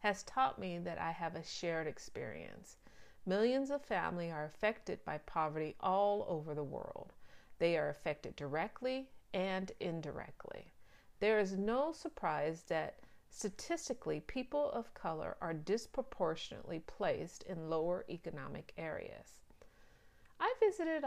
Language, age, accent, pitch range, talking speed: English, 40-59, American, 170-225 Hz, 125 wpm